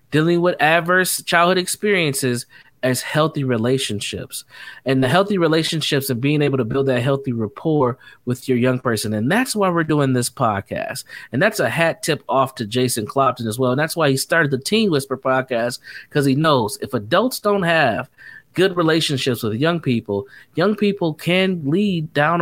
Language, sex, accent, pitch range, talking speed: English, male, American, 130-170 Hz, 180 wpm